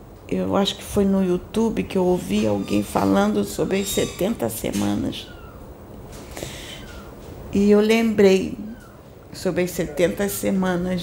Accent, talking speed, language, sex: Brazilian, 120 wpm, Portuguese, female